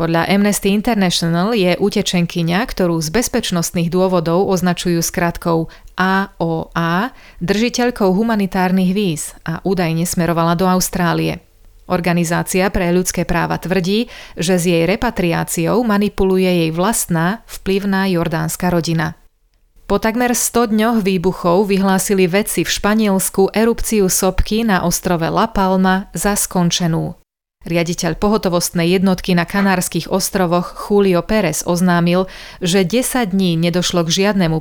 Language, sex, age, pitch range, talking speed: Slovak, female, 30-49, 170-200 Hz, 115 wpm